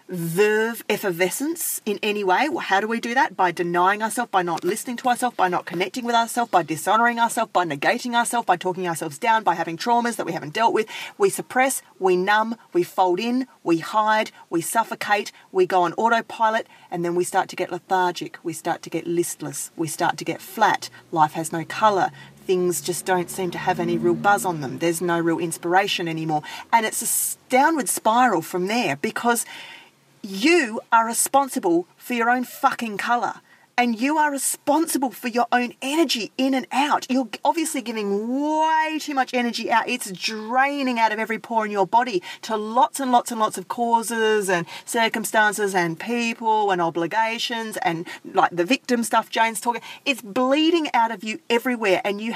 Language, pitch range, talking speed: English, 185-240 Hz, 190 wpm